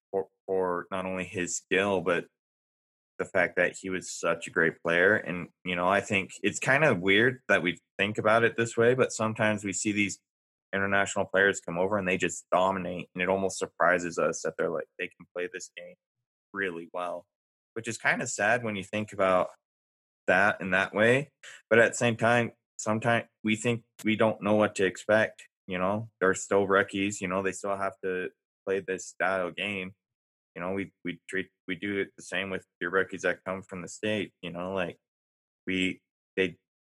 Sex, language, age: male, English, 20-39